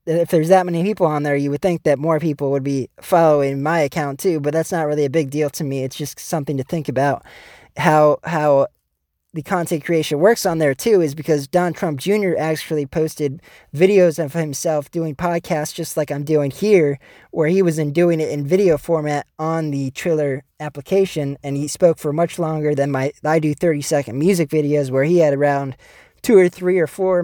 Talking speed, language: 210 wpm, English